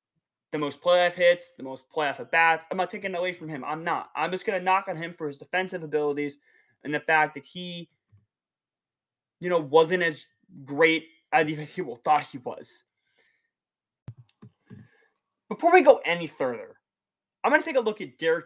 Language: English